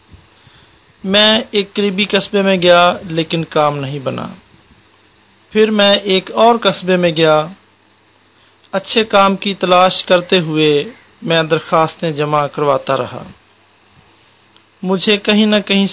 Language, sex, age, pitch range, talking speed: English, male, 40-59, 145-195 Hz, 120 wpm